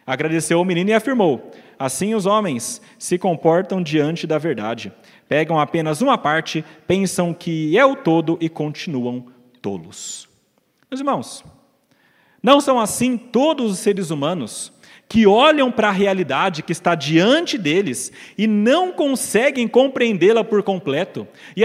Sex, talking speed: male, 140 wpm